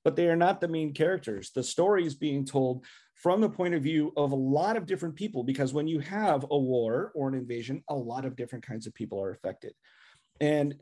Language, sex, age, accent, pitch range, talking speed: English, male, 40-59, American, 135-175 Hz, 235 wpm